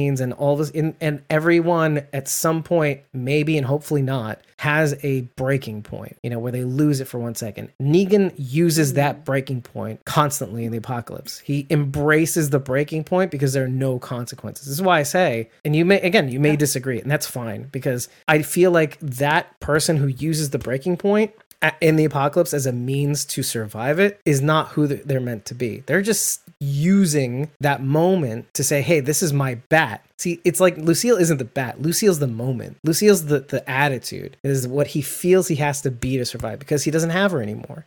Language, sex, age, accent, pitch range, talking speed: English, male, 30-49, American, 130-160 Hz, 205 wpm